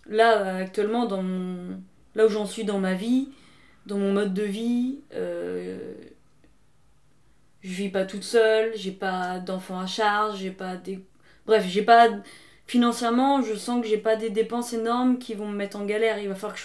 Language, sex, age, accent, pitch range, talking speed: French, female, 20-39, French, 190-220 Hz, 190 wpm